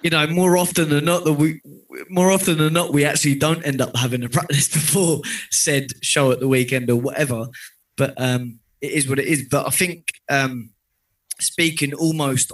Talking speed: 195 wpm